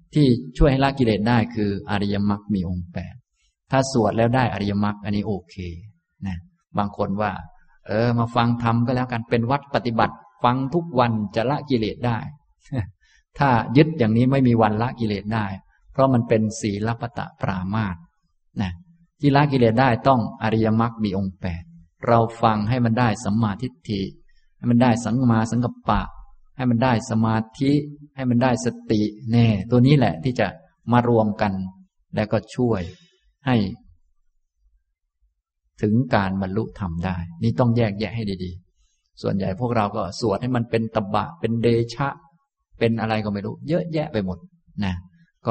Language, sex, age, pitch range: Thai, male, 20-39, 100-125 Hz